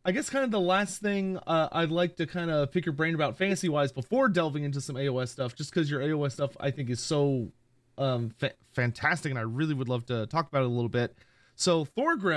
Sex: male